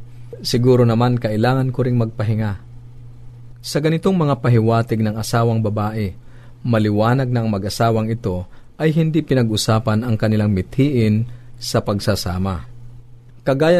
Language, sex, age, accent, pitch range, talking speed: Filipino, male, 40-59, native, 110-125 Hz, 115 wpm